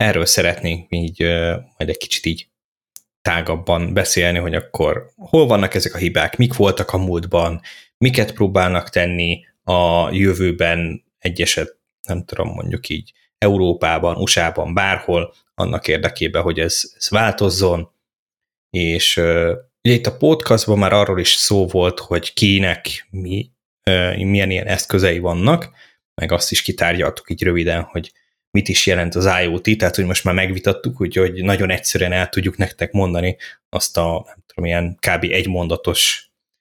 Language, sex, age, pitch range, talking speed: Hungarian, male, 20-39, 85-100 Hz, 150 wpm